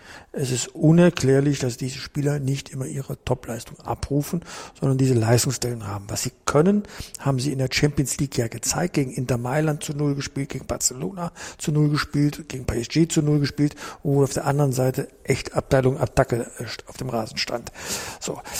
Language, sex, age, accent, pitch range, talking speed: German, male, 60-79, German, 130-160 Hz, 175 wpm